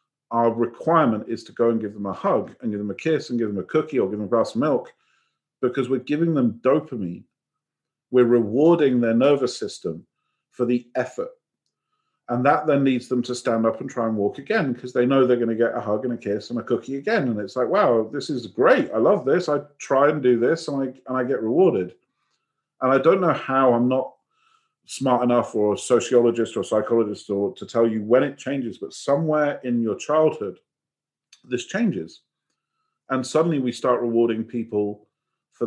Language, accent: English, British